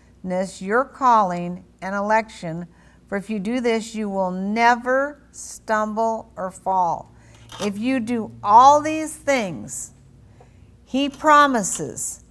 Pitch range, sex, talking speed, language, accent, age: 180-240 Hz, female, 110 wpm, English, American, 50-69